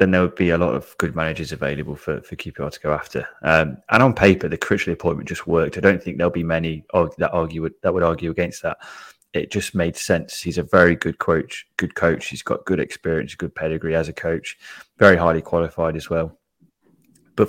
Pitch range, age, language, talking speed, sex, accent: 80-90 Hz, 20-39, English, 225 wpm, male, British